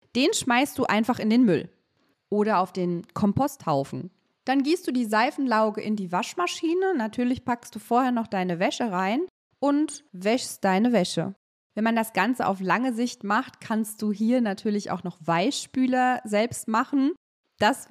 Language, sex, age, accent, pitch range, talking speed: German, female, 30-49, German, 200-260 Hz, 165 wpm